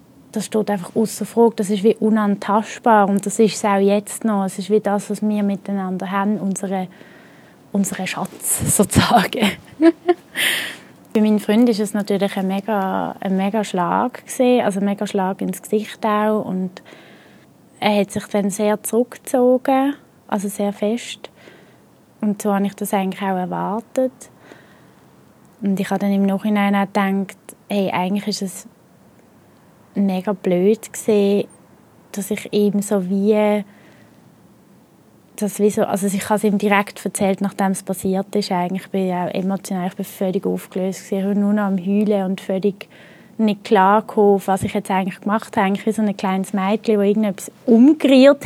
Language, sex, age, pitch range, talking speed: German, female, 20-39, 195-215 Hz, 160 wpm